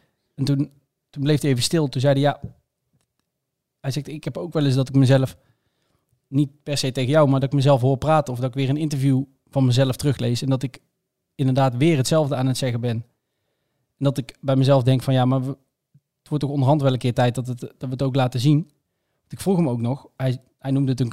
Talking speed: 245 wpm